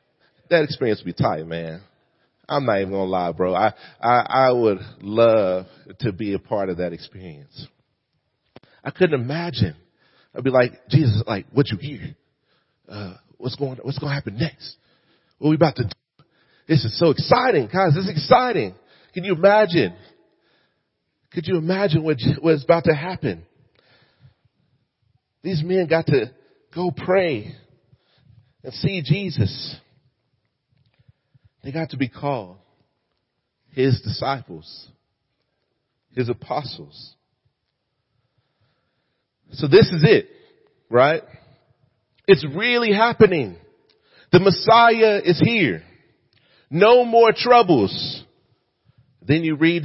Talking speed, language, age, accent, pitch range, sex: 125 wpm, English, 40-59, American, 120-165 Hz, male